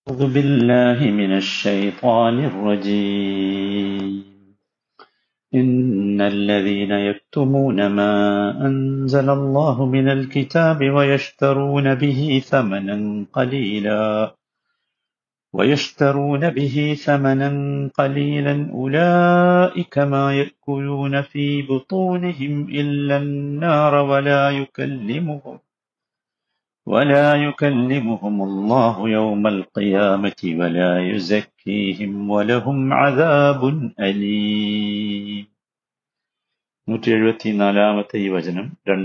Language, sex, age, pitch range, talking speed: Malayalam, male, 50-69, 100-140 Hz, 55 wpm